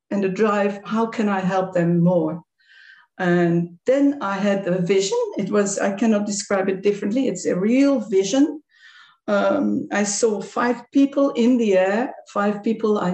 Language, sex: English, female